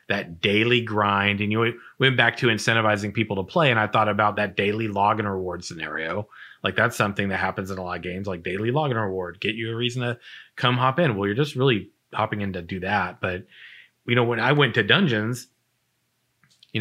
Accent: American